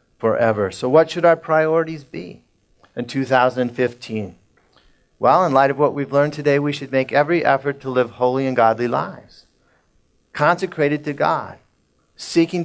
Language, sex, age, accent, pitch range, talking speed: English, male, 40-59, American, 105-140 Hz, 150 wpm